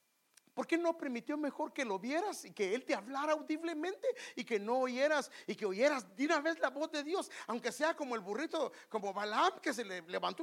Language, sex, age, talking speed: English, male, 50-69, 225 wpm